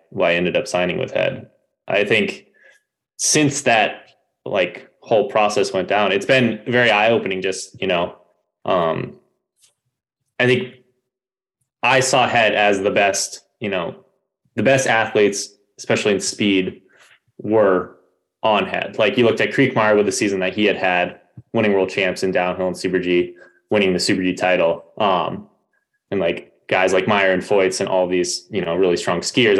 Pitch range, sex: 95-125 Hz, male